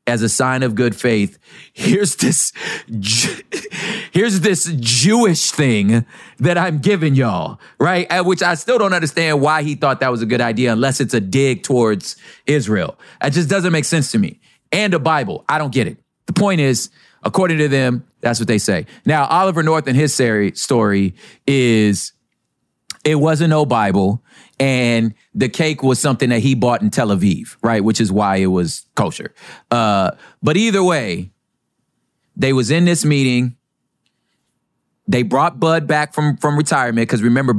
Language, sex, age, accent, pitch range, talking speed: English, male, 40-59, American, 105-150 Hz, 170 wpm